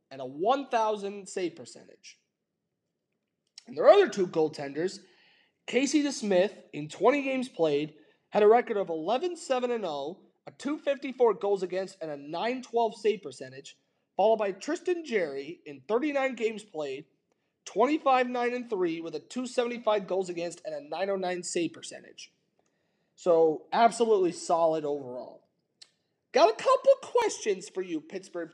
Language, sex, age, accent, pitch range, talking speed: English, male, 30-49, American, 170-255 Hz, 125 wpm